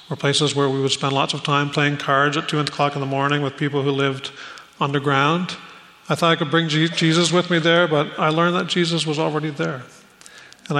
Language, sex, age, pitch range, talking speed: English, male, 40-59, 145-165 Hz, 220 wpm